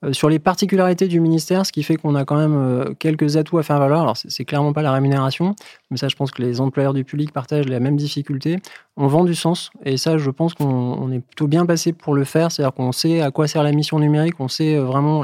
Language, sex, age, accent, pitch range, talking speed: French, male, 20-39, French, 135-160 Hz, 270 wpm